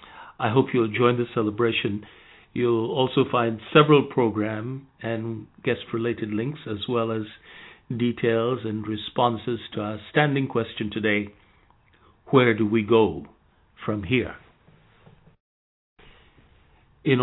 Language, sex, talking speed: English, male, 110 wpm